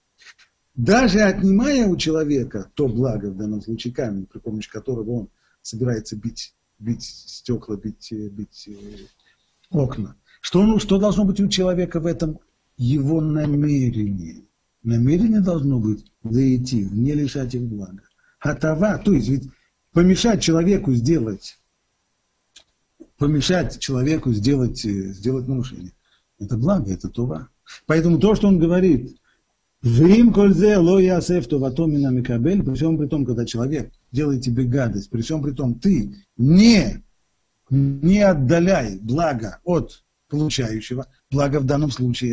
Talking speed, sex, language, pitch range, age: 120 wpm, male, Russian, 120-180 Hz, 50-69